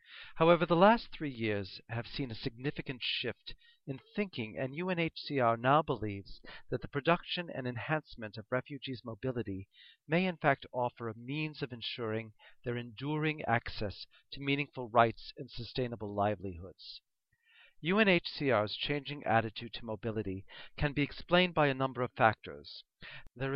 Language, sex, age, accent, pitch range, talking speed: English, male, 40-59, American, 115-145 Hz, 140 wpm